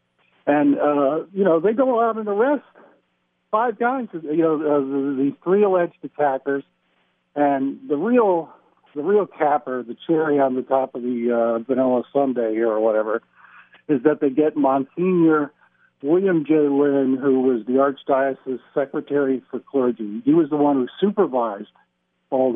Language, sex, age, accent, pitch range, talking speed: English, male, 50-69, American, 130-165 Hz, 155 wpm